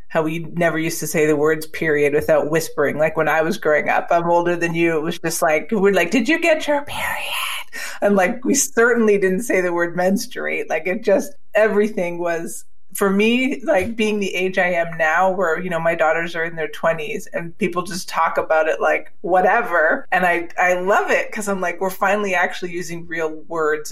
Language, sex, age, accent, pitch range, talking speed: English, female, 30-49, American, 165-195 Hz, 215 wpm